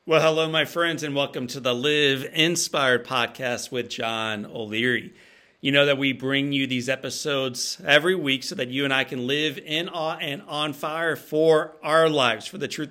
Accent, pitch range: American, 125-180 Hz